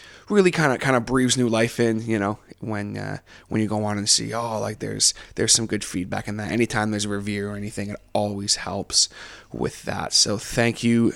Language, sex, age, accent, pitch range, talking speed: English, male, 20-39, American, 100-115 Hz, 225 wpm